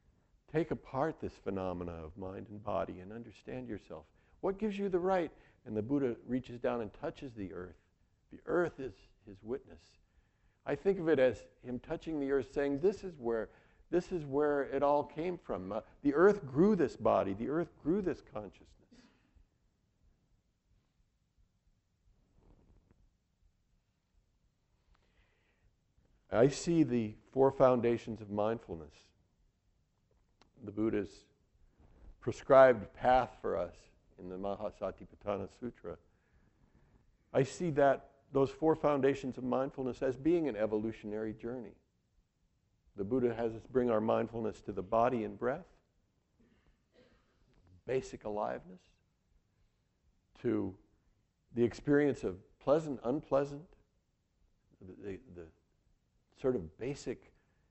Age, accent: 50-69, American